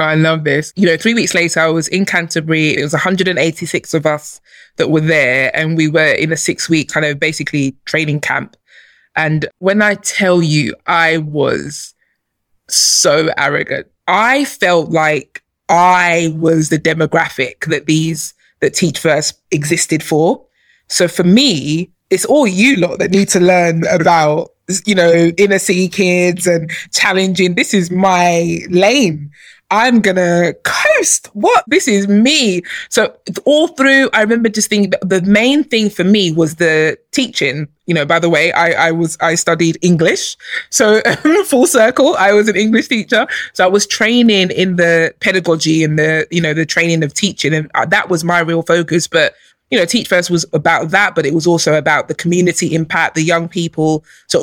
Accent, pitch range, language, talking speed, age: British, 160-195 Hz, English, 180 wpm, 20-39